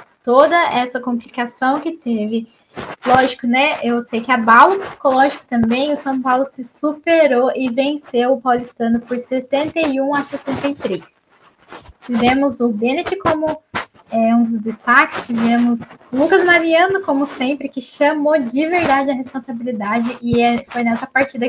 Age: 10-29